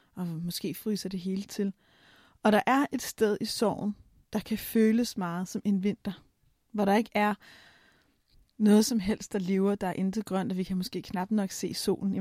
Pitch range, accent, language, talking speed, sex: 195-230 Hz, native, Danish, 205 wpm, female